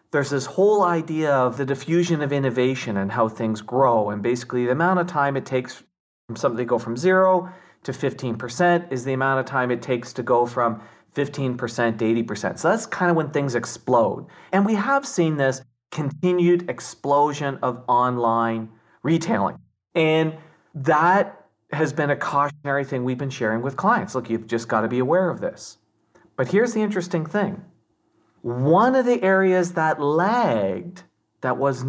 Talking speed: 175 wpm